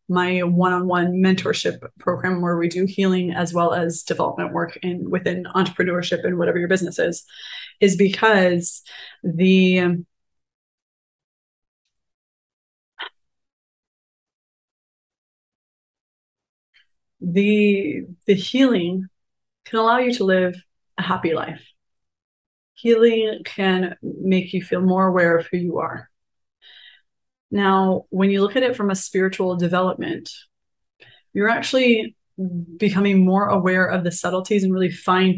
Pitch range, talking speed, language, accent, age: 175-200 Hz, 115 wpm, English, American, 30-49